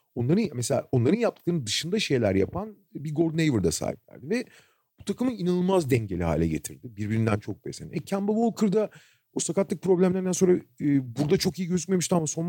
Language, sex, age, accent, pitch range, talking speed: Turkish, male, 40-59, native, 120-185 Hz, 180 wpm